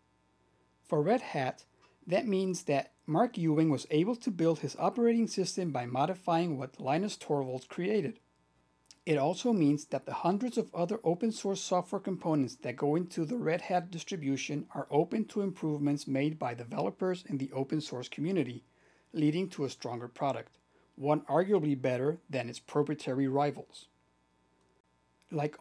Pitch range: 130-180 Hz